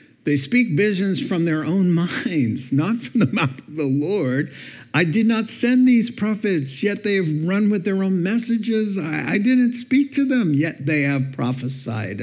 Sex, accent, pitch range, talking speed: male, American, 125-190 Hz, 185 wpm